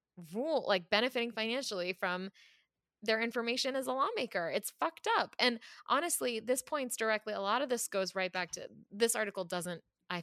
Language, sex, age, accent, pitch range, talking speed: English, female, 20-39, American, 165-210 Hz, 175 wpm